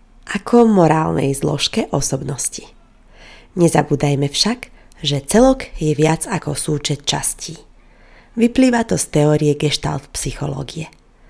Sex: female